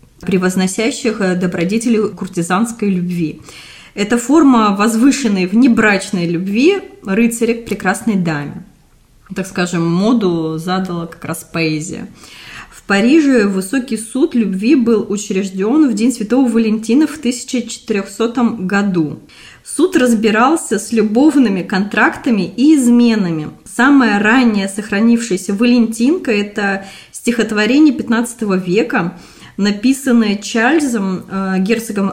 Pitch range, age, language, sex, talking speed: 190-240 Hz, 20-39, Russian, female, 95 wpm